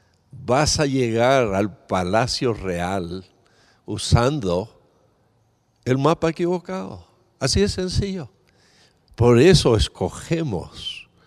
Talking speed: 85 wpm